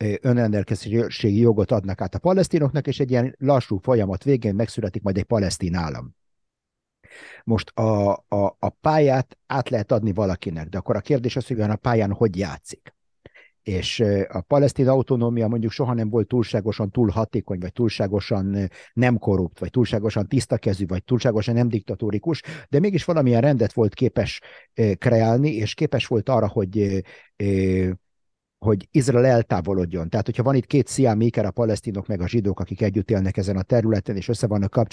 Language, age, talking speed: Hungarian, 50-69, 165 wpm